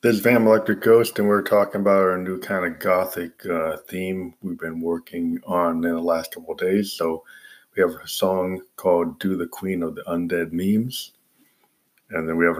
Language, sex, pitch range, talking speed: English, male, 85-95 Hz, 205 wpm